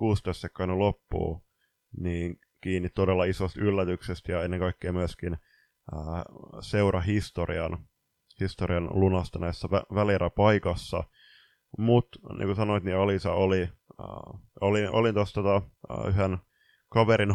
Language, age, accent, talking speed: Finnish, 20-39, native, 125 wpm